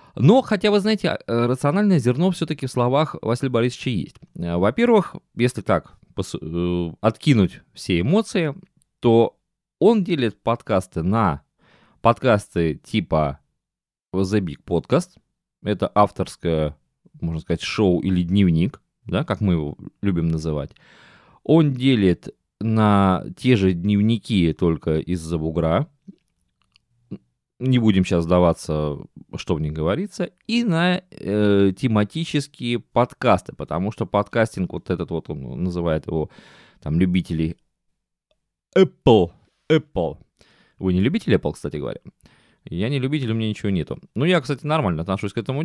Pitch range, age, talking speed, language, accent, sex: 90-145 Hz, 20-39, 125 wpm, Russian, native, male